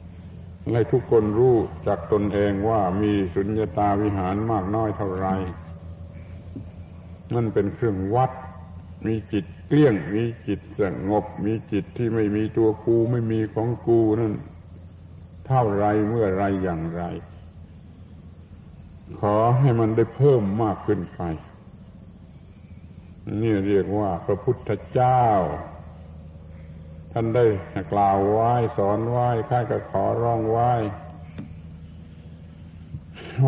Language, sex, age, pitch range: Thai, male, 70-89, 90-115 Hz